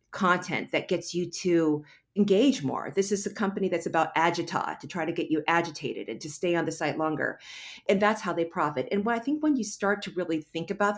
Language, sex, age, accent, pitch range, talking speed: English, female, 50-69, American, 160-215 Hz, 230 wpm